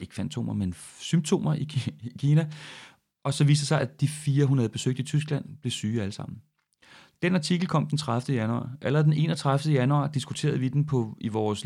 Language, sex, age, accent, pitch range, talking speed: Danish, male, 30-49, native, 125-155 Hz, 190 wpm